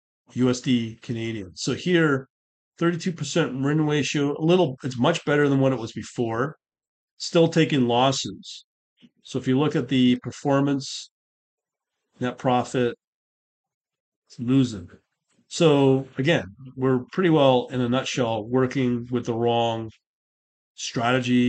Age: 40-59